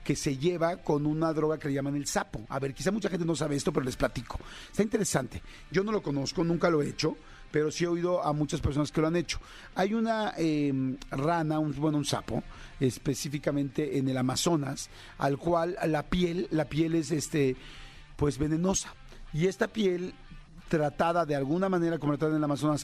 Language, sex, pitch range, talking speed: Spanish, male, 140-170 Hz, 200 wpm